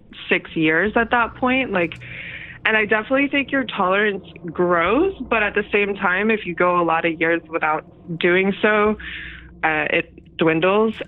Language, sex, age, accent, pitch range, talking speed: English, female, 20-39, American, 160-200 Hz, 170 wpm